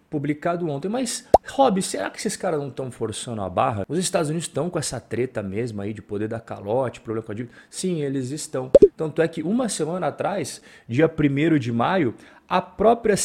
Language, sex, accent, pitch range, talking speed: Portuguese, male, Brazilian, 120-170 Hz, 205 wpm